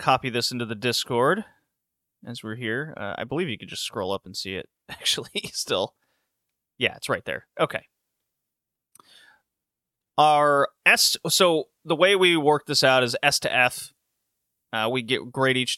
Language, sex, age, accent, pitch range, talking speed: English, male, 30-49, American, 115-145 Hz, 165 wpm